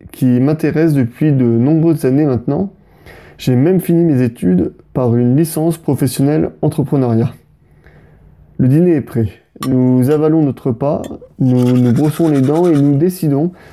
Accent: French